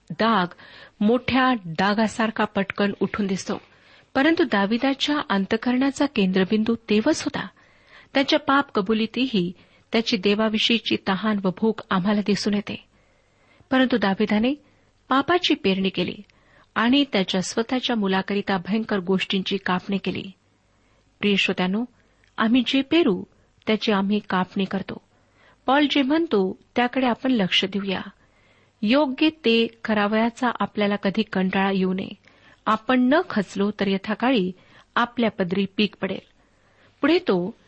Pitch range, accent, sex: 195-250 Hz, native, female